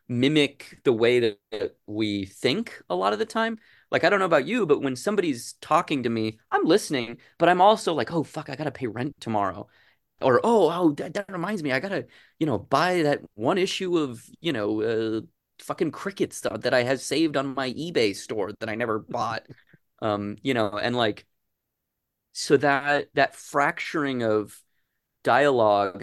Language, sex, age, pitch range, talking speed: English, male, 30-49, 105-135 Hz, 185 wpm